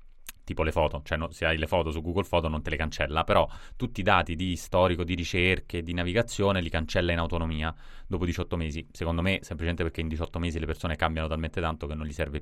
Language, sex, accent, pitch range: Italian, male, native, 80-100 Hz